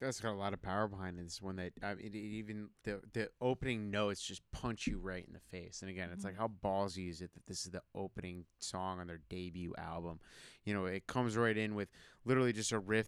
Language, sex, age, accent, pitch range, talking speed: English, male, 20-39, American, 95-110 Hz, 255 wpm